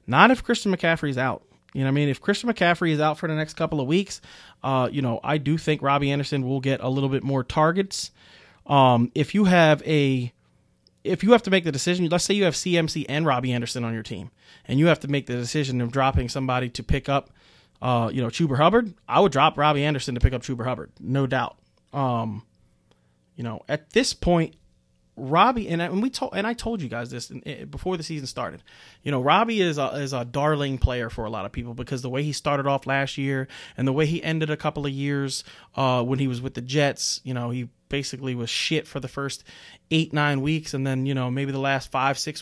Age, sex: 30-49, male